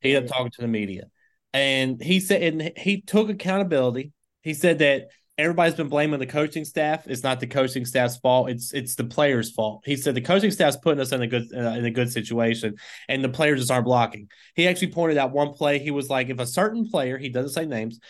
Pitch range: 120-150 Hz